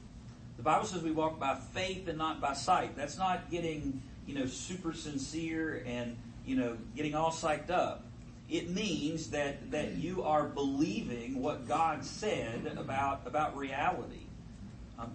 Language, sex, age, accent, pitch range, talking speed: English, male, 40-59, American, 120-150 Hz, 150 wpm